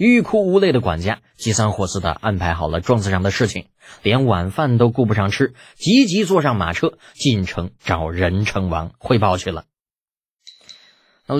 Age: 20-39